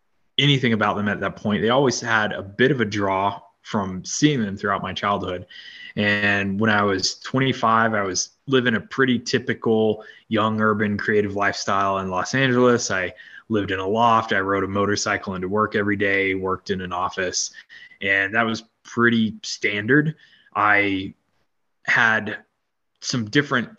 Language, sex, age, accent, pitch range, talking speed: English, male, 20-39, American, 100-115 Hz, 160 wpm